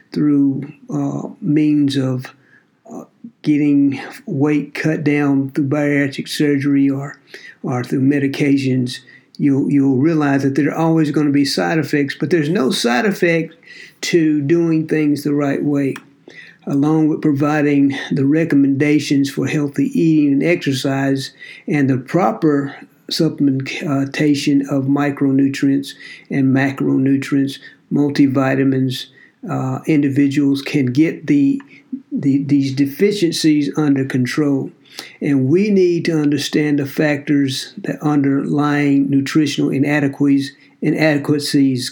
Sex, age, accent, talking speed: male, 50-69, American, 115 wpm